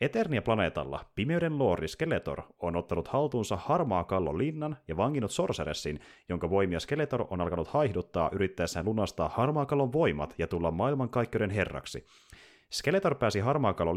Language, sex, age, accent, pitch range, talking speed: Finnish, male, 30-49, native, 85-125 Hz, 130 wpm